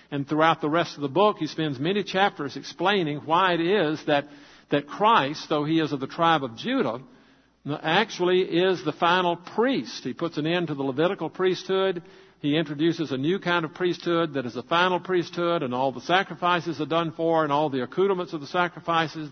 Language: English